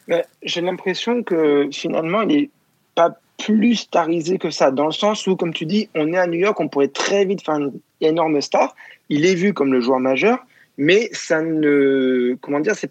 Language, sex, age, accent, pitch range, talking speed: French, male, 20-39, French, 135-180 Hz, 210 wpm